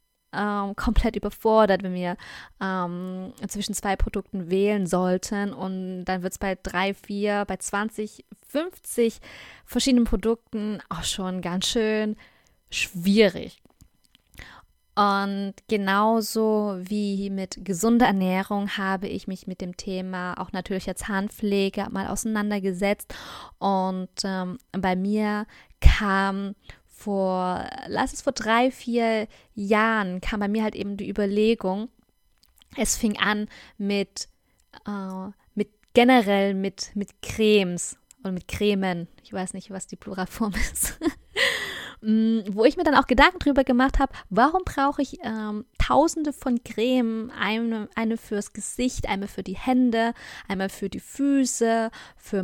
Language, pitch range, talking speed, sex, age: German, 195-235 Hz, 130 wpm, female, 20-39